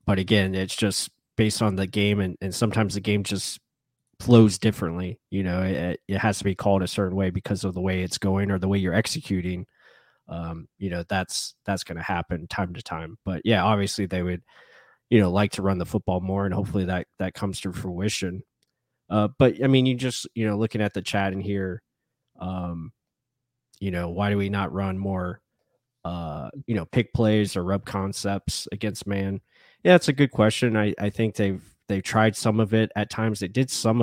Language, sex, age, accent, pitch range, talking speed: English, male, 20-39, American, 95-110 Hz, 210 wpm